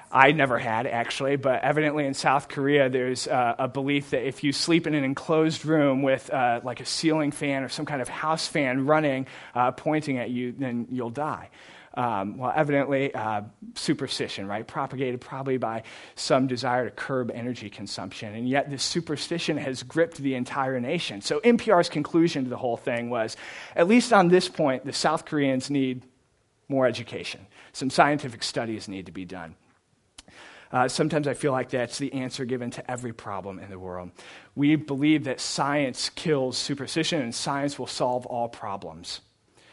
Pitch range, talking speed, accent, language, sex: 125-150 Hz, 180 wpm, American, English, male